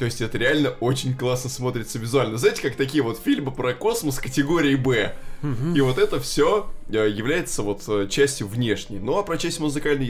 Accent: native